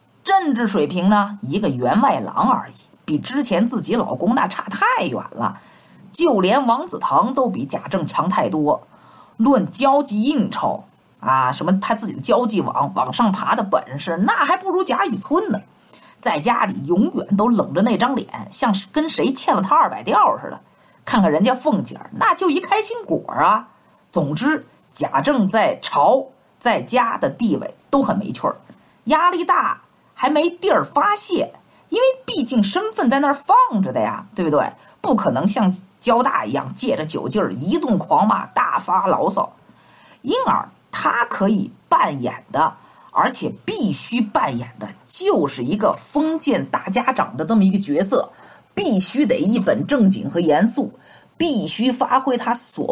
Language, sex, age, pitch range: Chinese, female, 50-69, 205-295 Hz